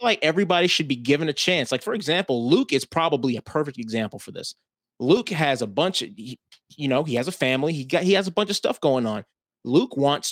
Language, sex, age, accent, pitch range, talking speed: English, male, 30-49, American, 125-165 Hz, 240 wpm